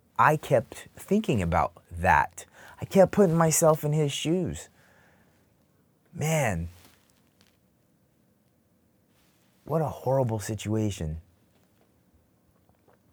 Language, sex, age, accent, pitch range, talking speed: English, male, 30-49, American, 90-120 Hz, 80 wpm